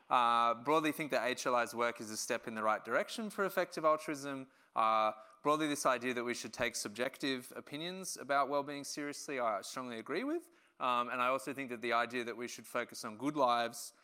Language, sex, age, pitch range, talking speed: English, male, 20-39, 125-175 Hz, 205 wpm